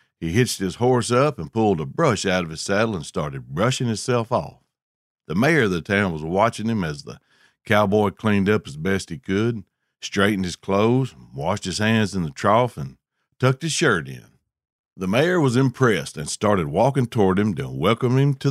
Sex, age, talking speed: male, 60-79, 200 wpm